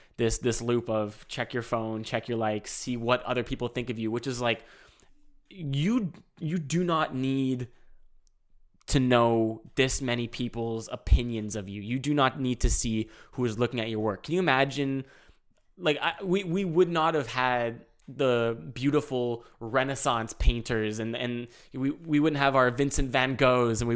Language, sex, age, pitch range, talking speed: English, male, 20-39, 115-140 Hz, 180 wpm